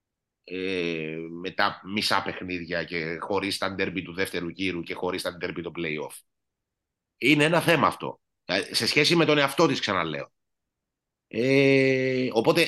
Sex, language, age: male, Greek, 30-49